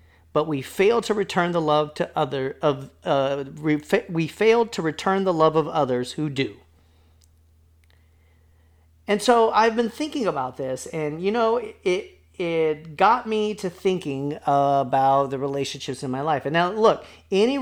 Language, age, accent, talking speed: English, 40-59, American, 170 wpm